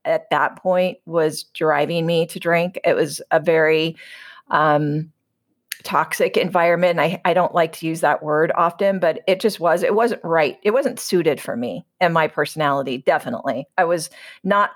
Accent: American